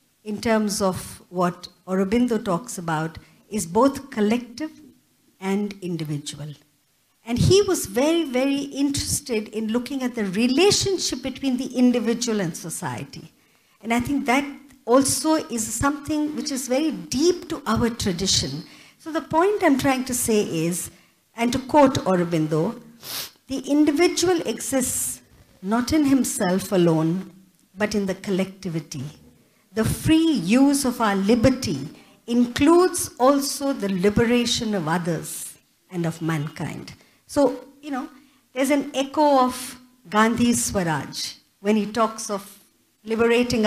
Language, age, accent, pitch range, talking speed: English, 60-79, Indian, 190-270 Hz, 130 wpm